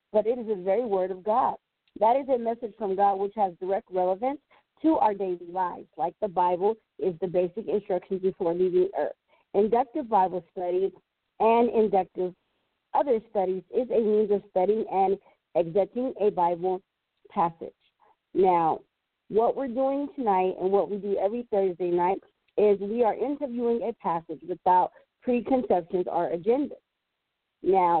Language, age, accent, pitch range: English, 50-69, American, 190-235 Hz